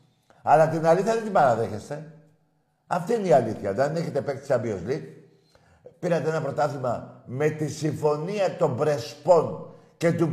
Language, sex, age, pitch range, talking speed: Greek, male, 50-69, 130-180 Hz, 145 wpm